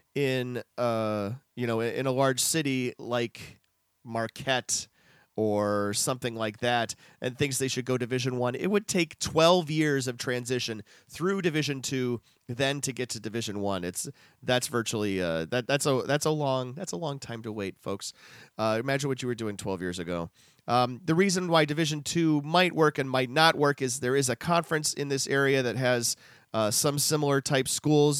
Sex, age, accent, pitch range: male, 30-49, American, 115-140 Hz